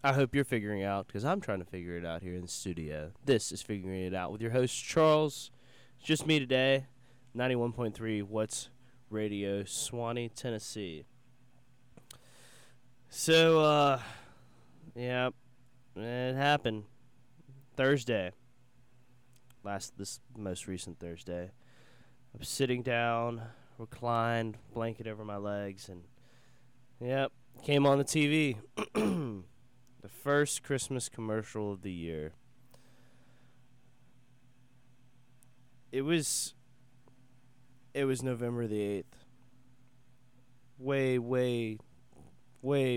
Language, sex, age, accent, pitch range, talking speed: English, male, 20-39, American, 110-125 Hz, 110 wpm